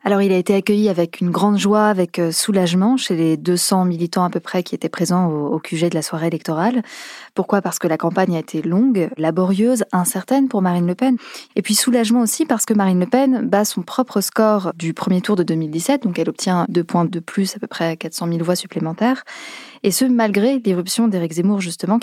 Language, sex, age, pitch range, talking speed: French, female, 20-39, 170-220 Hz, 220 wpm